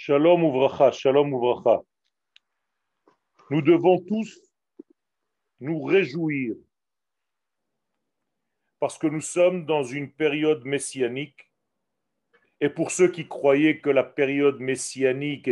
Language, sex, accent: French, male, French